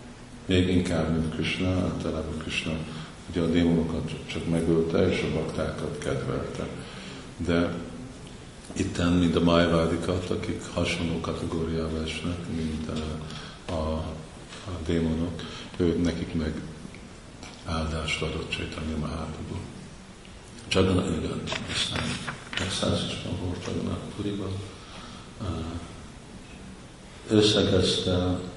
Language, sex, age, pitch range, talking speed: Hungarian, male, 50-69, 80-90 Hz, 95 wpm